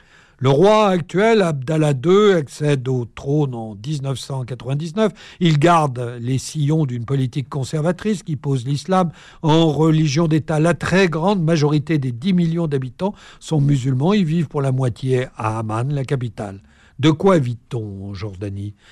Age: 60-79